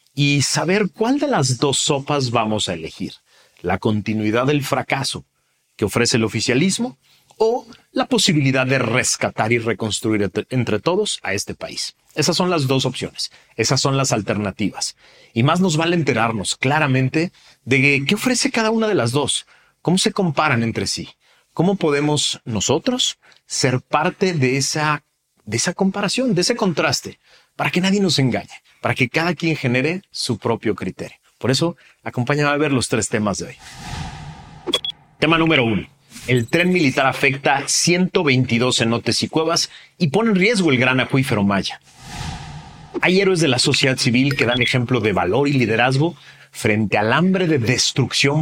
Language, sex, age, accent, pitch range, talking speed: Spanish, male, 40-59, Mexican, 115-165 Hz, 160 wpm